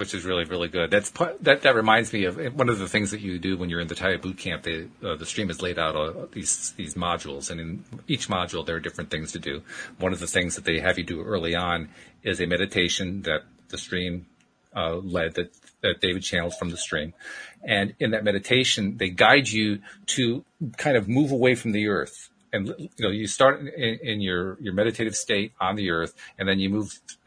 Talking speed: 235 wpm